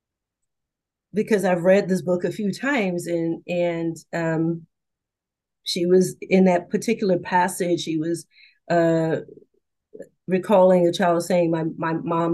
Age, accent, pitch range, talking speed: 40-59, American, 170-200 Hz, 130 wpm